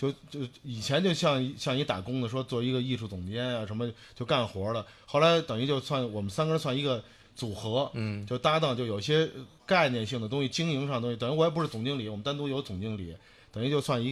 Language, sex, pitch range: Chinese, male, 115-145 Hz